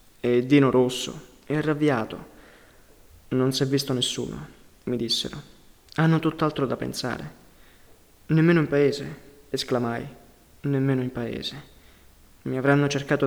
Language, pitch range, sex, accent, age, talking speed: Italian, 120-145 Hz, male, native, 20-39, 120 wpm